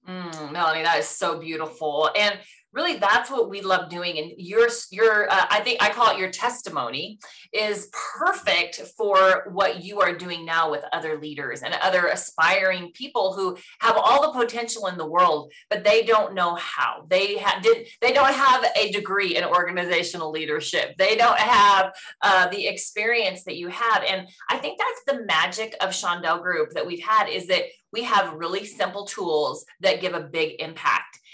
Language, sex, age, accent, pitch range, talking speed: English, female, 30-49, American, 180-230 Hz, 185 wpm